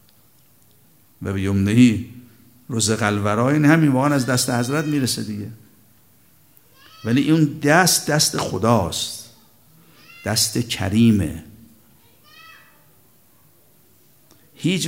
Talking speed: 75 wpm